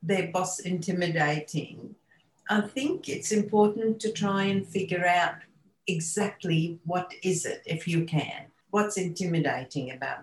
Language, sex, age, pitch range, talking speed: English, female, 50-69, 155-195 Hz, 130 wpm